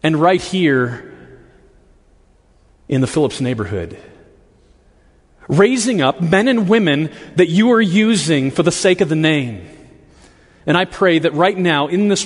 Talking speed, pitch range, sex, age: 145 wpm, 125-190 Hz, male, 30-49